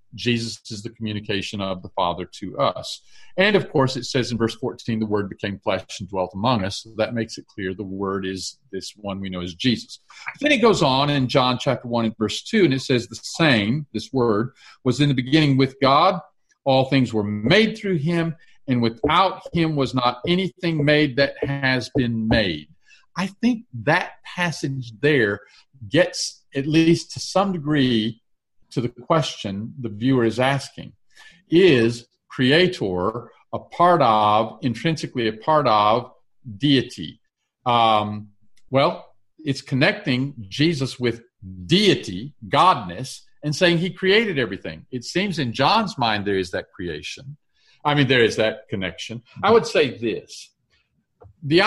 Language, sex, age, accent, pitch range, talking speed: English, male, 50-69, American, 110-150 Hz, 160 wpm